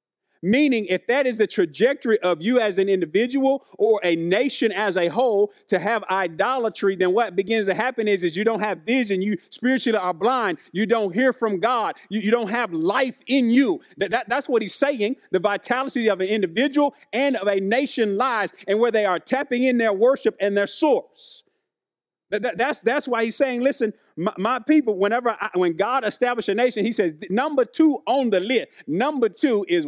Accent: American